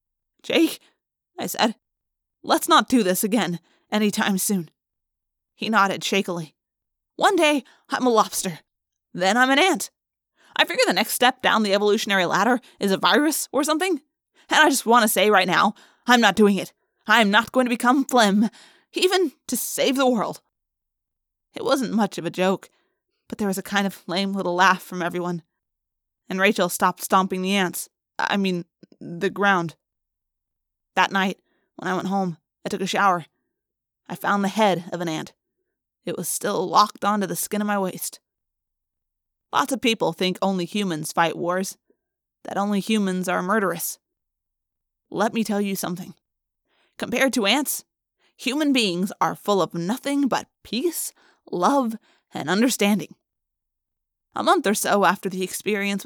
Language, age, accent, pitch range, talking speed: English, 20-39, American, 180-240 Hz, 165 wpm